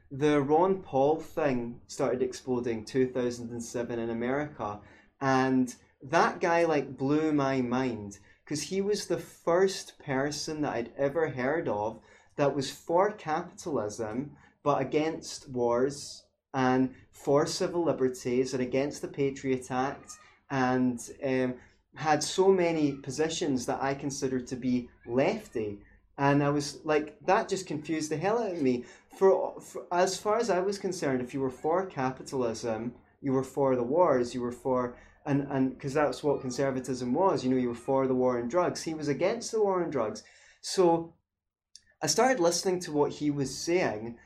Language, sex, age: English, male, 20-39